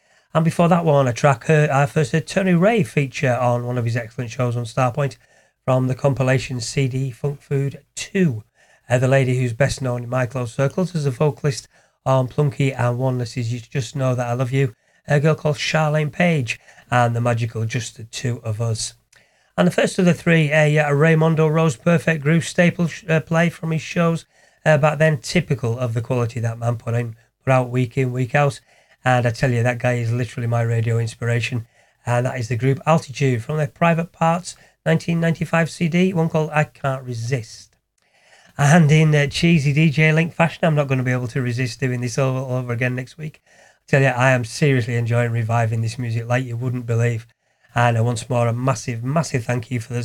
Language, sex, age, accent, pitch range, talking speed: English, male, 40-59, British, 120-155 Hz, 210 wpm